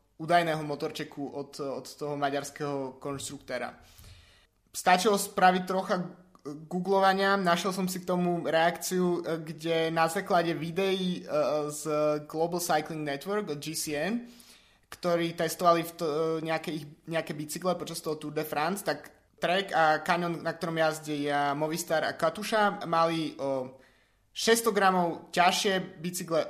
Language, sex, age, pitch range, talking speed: Slovak, male, 20-39, 150-185 Hz, 120 wpm